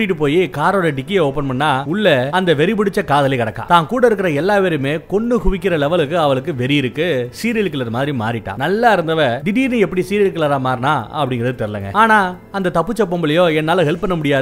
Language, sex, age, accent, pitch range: Tamil, male, 30-49, native, 135-190 Hz